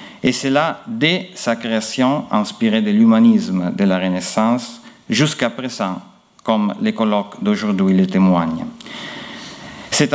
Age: 50-69